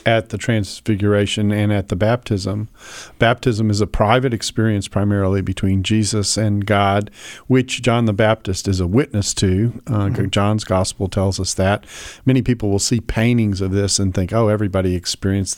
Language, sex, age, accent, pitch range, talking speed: English, male, 40-59, American, 100-120 Hz, 165 wpm